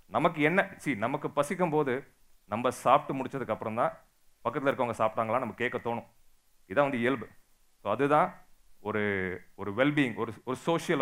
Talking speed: 120 wpm